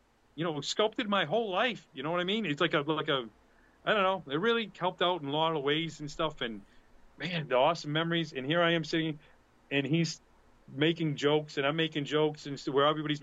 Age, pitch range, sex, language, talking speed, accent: 40-59, 135-170 Hz, male, English, 230 wpm, American